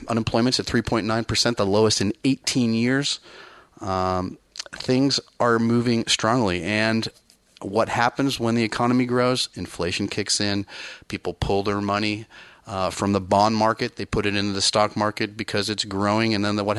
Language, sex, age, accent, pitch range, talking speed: English, male, 30-49, American, 95-120 Hz, 160 wpm